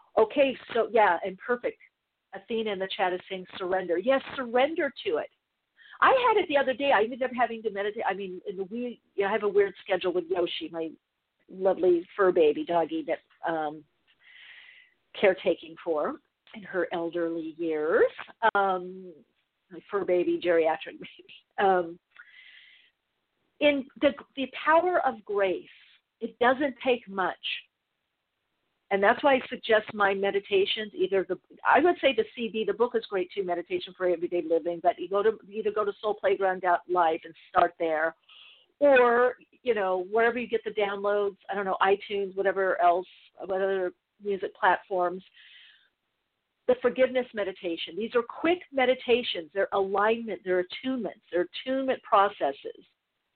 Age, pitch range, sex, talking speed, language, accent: 50-69, 180-250 Hz, female, 155 wpm, English, American